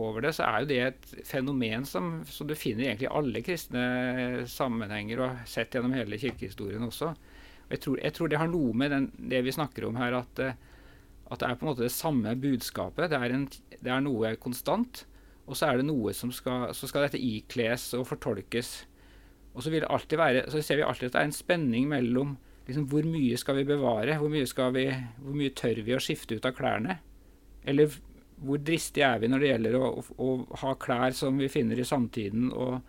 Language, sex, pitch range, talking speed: English, male, 115-140 Hz, 225 wpm